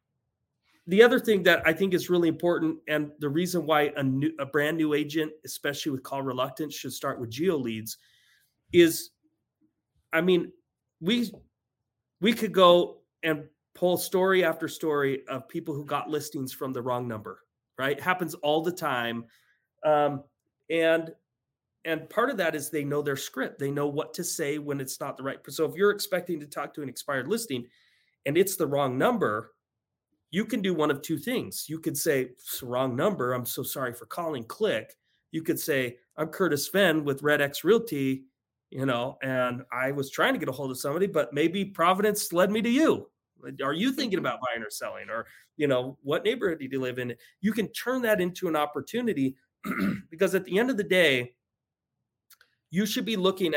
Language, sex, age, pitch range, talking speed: English, male, 30-49, 135-180 Hz, 195 wpm